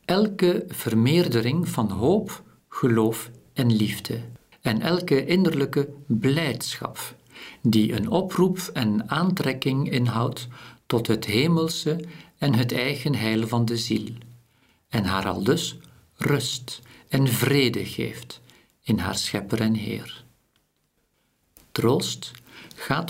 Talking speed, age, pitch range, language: 110 wpm, 50-69, 110-140 Hz, Dutch